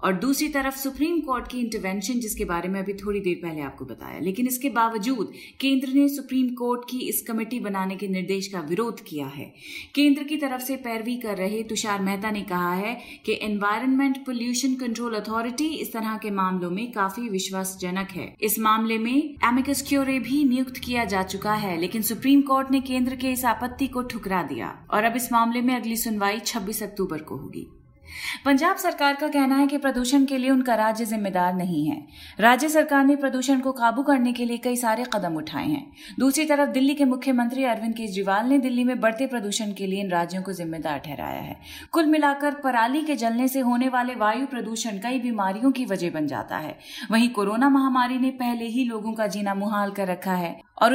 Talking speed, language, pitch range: 200 wpm, Hindi, 205-265 Hz